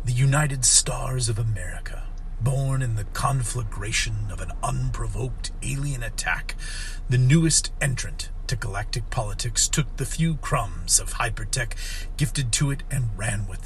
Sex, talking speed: male, 140 wpm